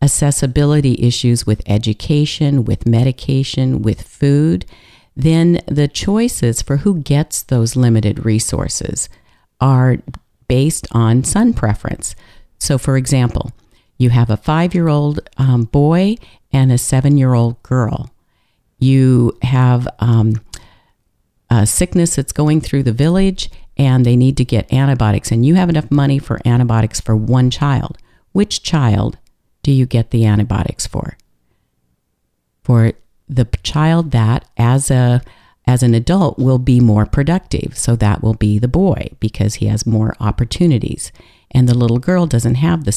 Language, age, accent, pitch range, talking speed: English, 50-69, American, 115-145 Hz, 140 wpm